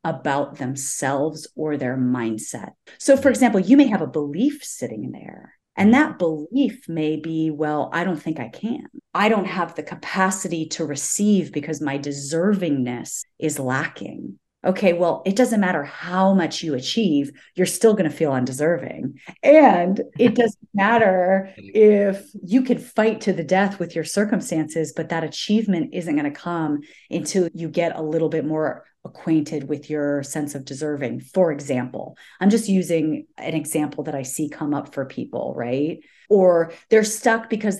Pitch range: 150-195 Hz